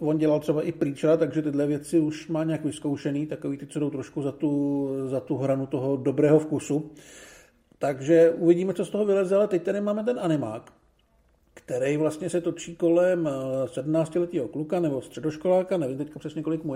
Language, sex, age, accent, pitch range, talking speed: Czech, male, 50-69, native, 155-190 Hz, 175 wpm